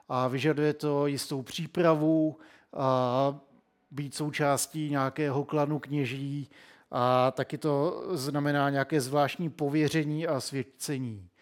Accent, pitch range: native, 130-150 Hz